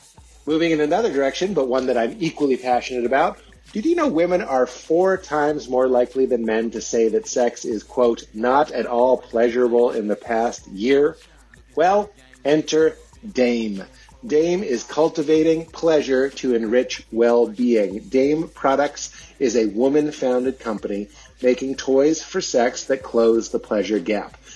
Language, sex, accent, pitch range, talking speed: English, male, American, 120-160 Hz, 150 wpm